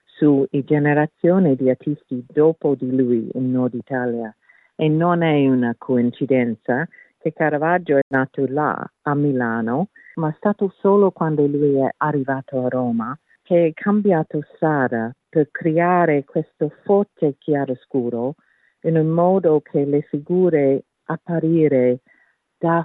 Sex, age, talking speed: female, 50-69, 130 wpm